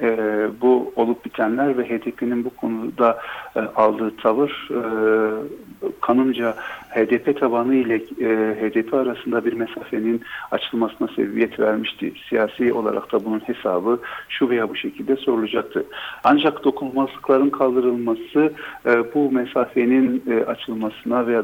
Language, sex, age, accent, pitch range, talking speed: Turkish, male, 50-69, native, 110-130 Hz, 105 wpm